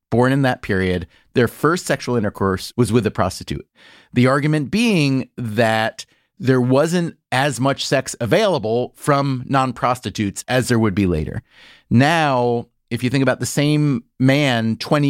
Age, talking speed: 30-49, 150 wpm